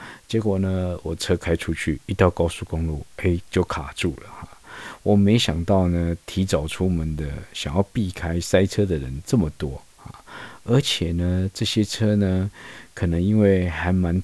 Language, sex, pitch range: Chinese, male, 80-100 Hz